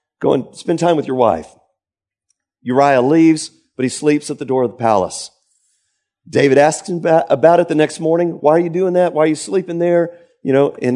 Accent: American